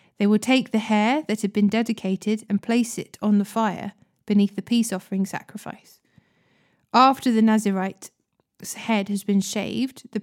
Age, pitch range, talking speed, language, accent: 20-39, 200-225 Hz, 165 wpm, English, British